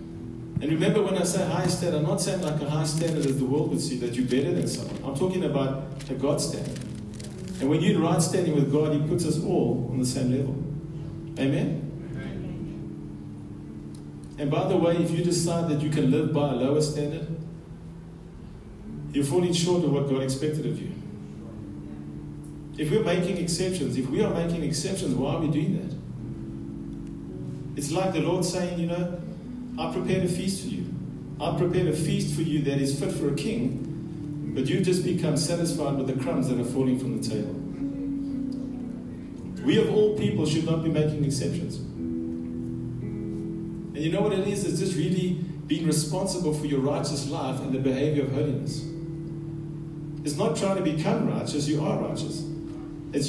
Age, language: 40-59, English